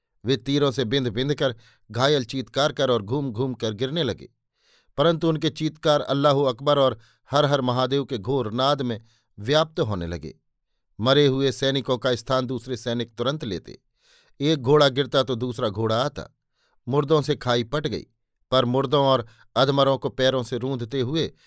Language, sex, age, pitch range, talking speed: Hindi, male, 50-69, 120-145 Hz, 170 wpm